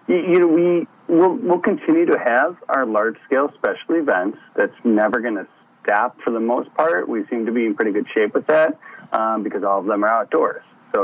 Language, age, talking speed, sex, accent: English, 40-59, 210 wpm, male, American